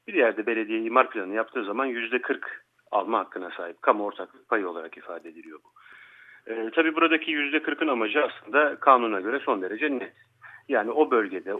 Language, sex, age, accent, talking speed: Turkish, male, 40-59, native, 170 wpm